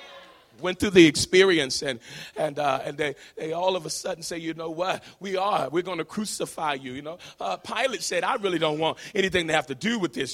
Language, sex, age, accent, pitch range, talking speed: English, male, 40-59, American, 185-260 Hz, 240 wpm